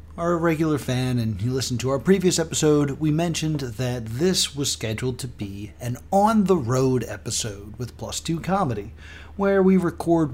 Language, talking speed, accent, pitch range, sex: English, 170 wpm, American, 105-145 Hz, male